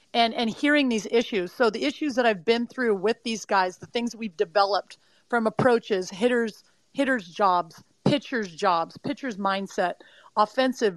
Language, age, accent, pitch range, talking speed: English, 40-59, American, 205-245 Hz, 160 wpm